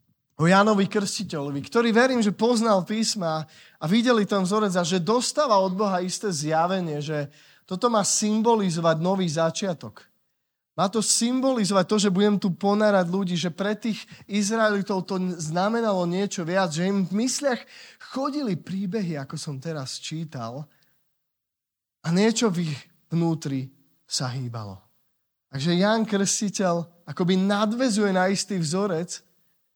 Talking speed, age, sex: 135 wpm, 20-39, male